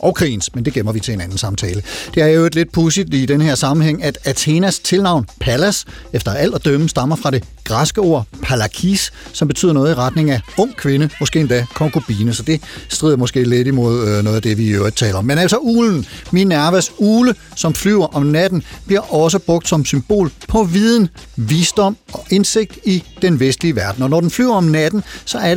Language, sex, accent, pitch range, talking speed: Danish, male, native, 125-185 Hz, 215 wpm